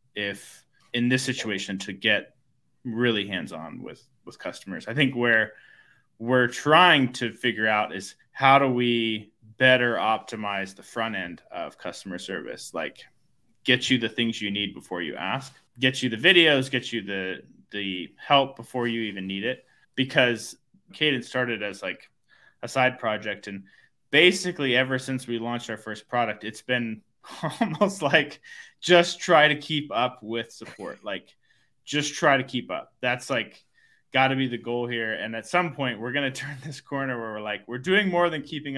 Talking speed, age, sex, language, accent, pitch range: 180 wpm, 20-39, male, English, American, 110-135 Hz